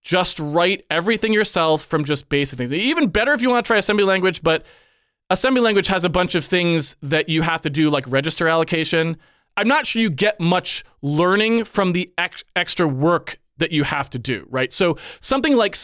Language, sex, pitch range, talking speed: English, male, 150-190 Hz, 205 wpm